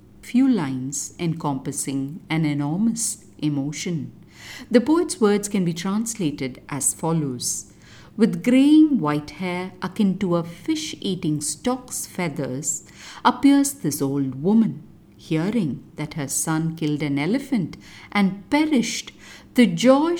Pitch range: 150-225 Hz